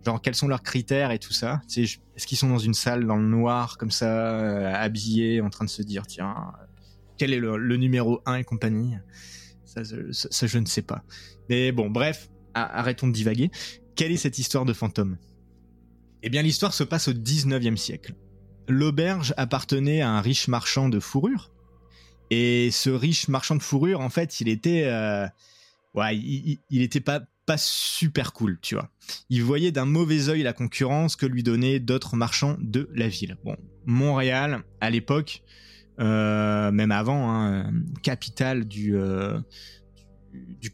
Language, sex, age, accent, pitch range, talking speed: French, male, 20-39, French, 105-135 Hz, 170 wpm